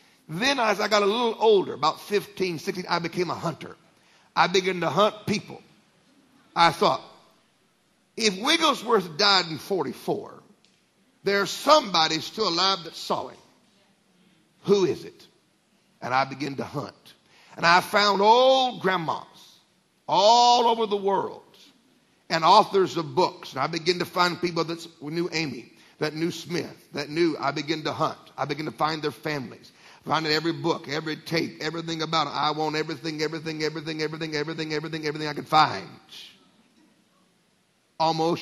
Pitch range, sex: 160-210 Hz, male